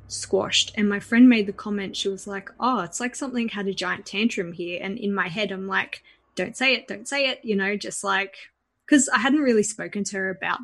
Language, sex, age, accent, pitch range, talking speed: English, female, 20-39, Australian, 185-230 Hz, 245 wpm